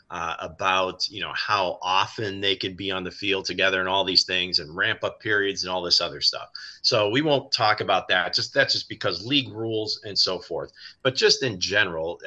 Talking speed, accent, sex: 220 wpm, American, male